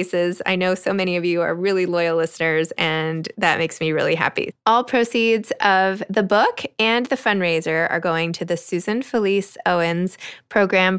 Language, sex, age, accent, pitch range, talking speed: English, female, 20-39, American, 165-210 Hz, 175 wpm